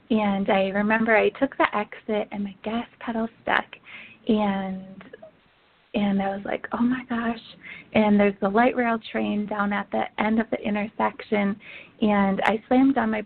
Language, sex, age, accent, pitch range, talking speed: English, female, 20-39, American, 205-235 Hz, 170 wpm